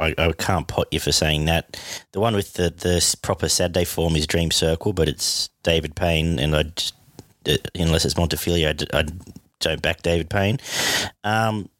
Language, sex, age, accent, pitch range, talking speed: English, male, 30-49, Australian, 80-95 Hz, 190 wpm